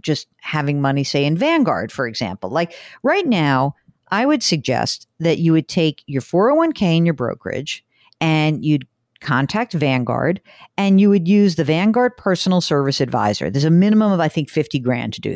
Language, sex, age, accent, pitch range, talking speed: English, female, 50-69, American, 140-195 Hz, 180 wpm